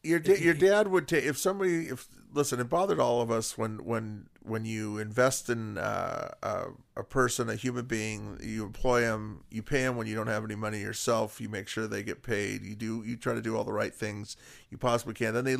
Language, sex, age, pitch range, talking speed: English, male, 40-59, 110-130 Hz, 240 wpm